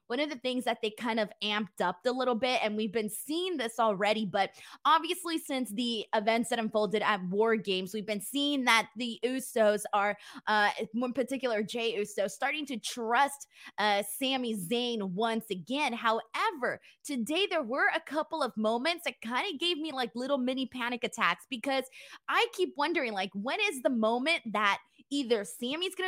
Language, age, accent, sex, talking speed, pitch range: English, 20-39, American, female, 185 wpm, 215-275 Hz